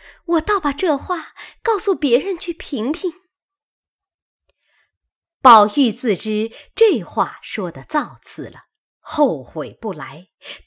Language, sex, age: Chinese, female, 30-49